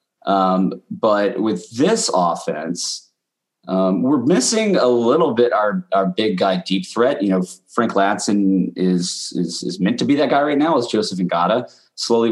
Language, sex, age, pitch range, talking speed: English, male, 20-39, 95-120 Hz, 170 wpm